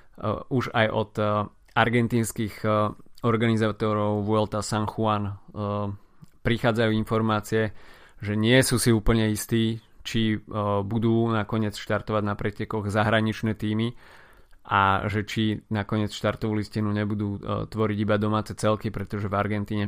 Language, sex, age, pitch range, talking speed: Slovak, male, 20-39, 105-110 Hz, 135 wpm